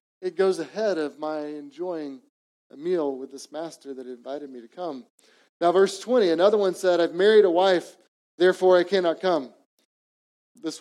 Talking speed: 170 wpm